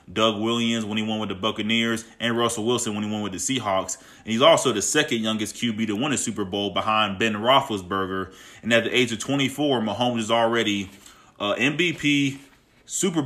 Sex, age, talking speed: male, 20-39, 200 wpm